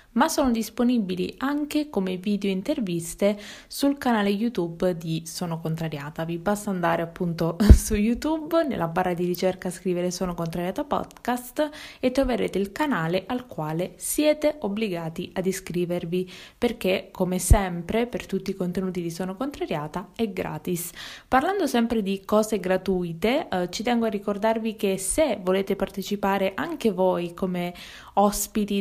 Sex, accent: female, native